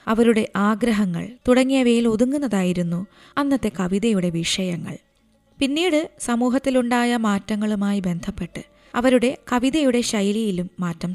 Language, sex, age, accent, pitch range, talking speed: Malayalam, female, 20-39, native, 195-240 Hz, 80 wpm